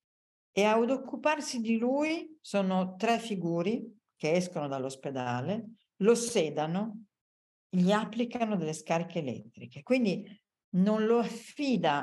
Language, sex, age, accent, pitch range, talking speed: Italian, female, 50-69, native, 180-245 Hz, 110 wpm